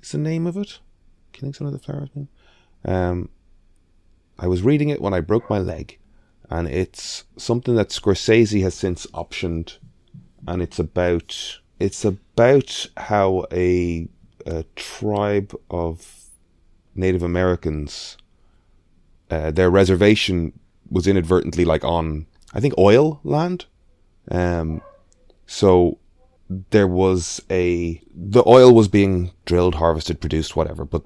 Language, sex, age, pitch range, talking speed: English, male, 30-49, 80-95 Hz, 125 wpm